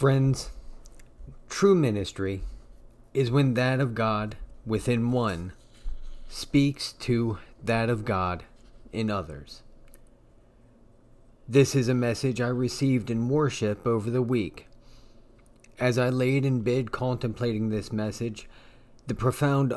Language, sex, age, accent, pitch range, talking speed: English, male, 30-49, American, 115-125 Hz, 115 wpm